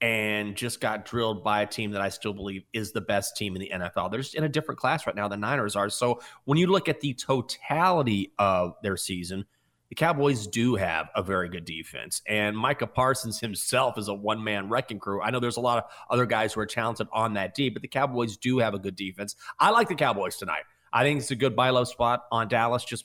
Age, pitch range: 30-49, 110-135 Hz